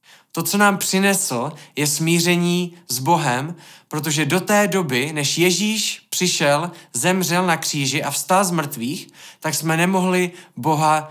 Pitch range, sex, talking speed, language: 140-175 Hz, male, 140 wpm, Czech